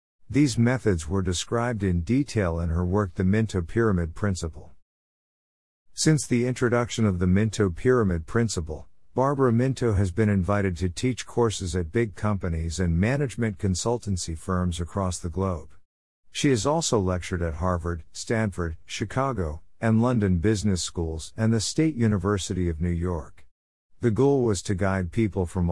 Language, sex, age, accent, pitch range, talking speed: English, male, 50-69, American, 85-115 Hz, 150 wpm